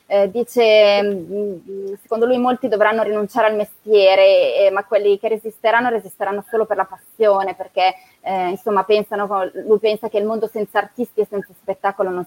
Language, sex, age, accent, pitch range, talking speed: Italian, female, 20-39, native, 195-235 Hz, 165 wpm